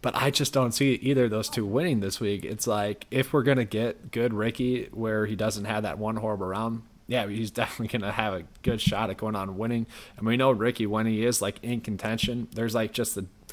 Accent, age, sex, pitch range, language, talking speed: American, 20-39, male, 95-115 Hz, English, 250 wpm